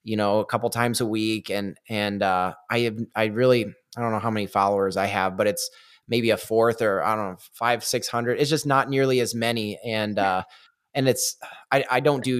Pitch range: 105-120 Hz